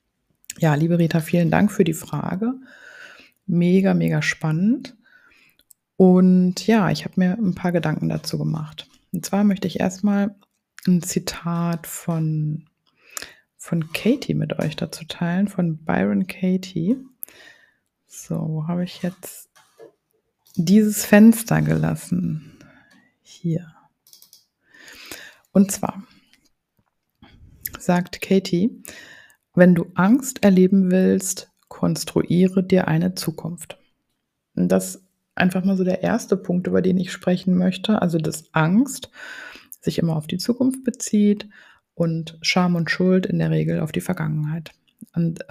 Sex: female